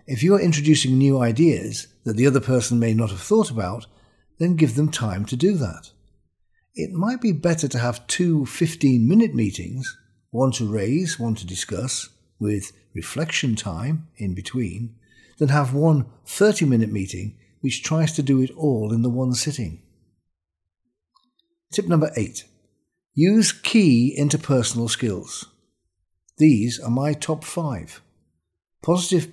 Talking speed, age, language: 145 wpm, 50-69, English